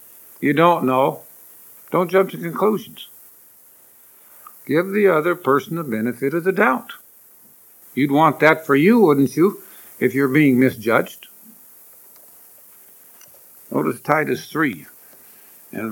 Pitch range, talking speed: 140-200 Hz, 115 wpm